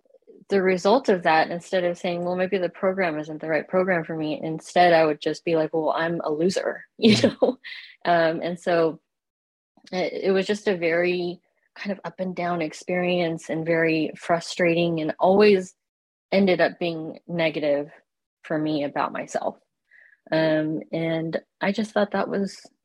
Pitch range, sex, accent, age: 155-190 Hz, female, American, 20-39